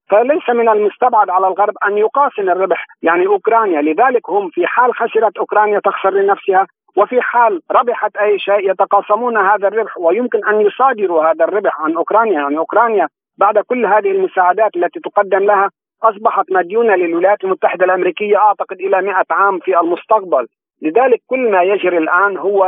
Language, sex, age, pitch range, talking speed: Arabic, male, 50-69, 170-210 Hz, 155 wpm